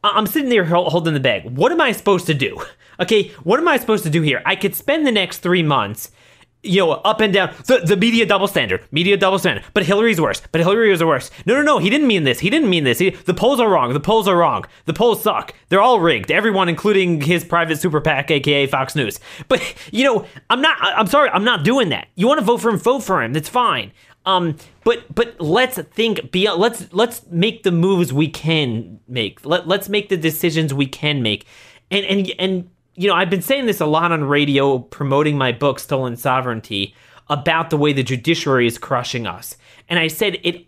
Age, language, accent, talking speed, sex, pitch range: 30-49, English, American, 225 wpm, male, 140-200 Hz